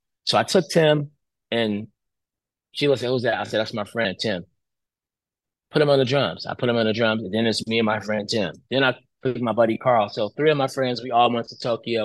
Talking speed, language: 250 wpm, English